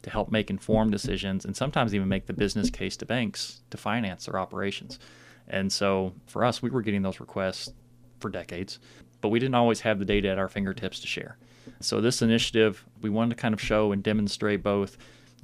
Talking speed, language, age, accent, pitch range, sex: 210 wpm, English, 30-49, American, 100-120 Hz, male